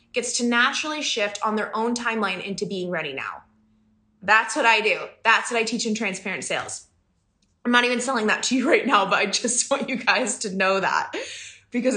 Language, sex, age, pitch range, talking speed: English, female, 20-39, 180-250 Hz, 210 wpm